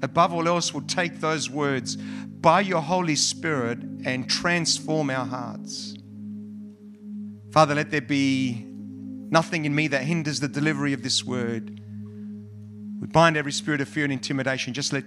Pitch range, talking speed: 130-175 Hz, 155 wpm